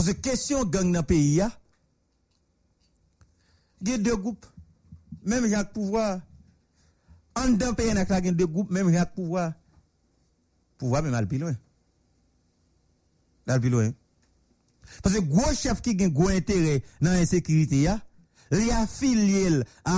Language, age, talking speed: English, 60-79, 130 wpm